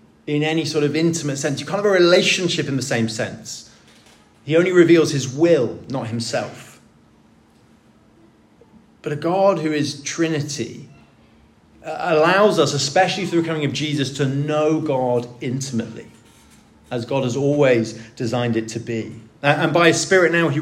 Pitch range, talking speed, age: 120-160 Hz, 155 wpm, 30-49